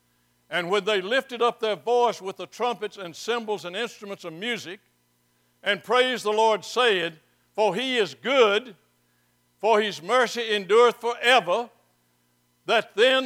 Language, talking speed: English, 145 wpm